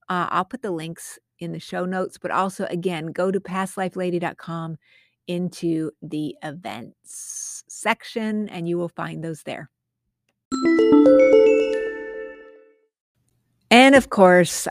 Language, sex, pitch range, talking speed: English, female, 165-210 Hz, 115 wpm